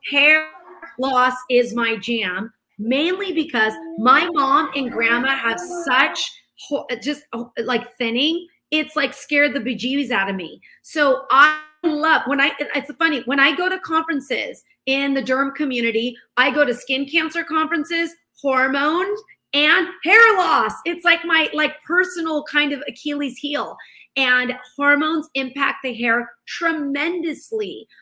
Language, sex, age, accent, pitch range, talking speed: English, female, 30-49, American, 245-310 Hz, 140 wpm